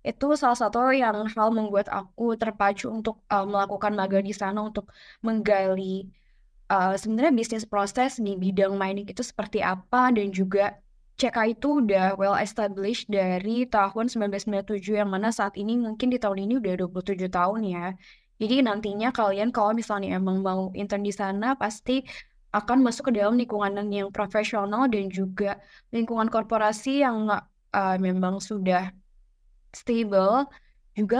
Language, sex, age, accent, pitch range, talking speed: English, female, 10-29, Indonesian, 195-225 Hz, 145 wpm